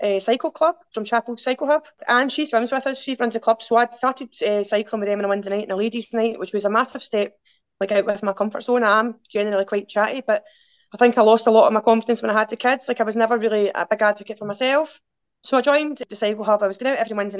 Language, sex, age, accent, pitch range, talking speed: English, female, 20-39, British, 195-235 Hz, 285 wpm